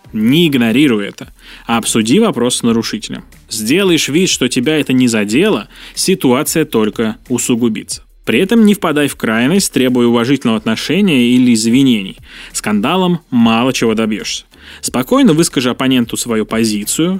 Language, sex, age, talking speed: Russian, male, 20-39, 130 wpm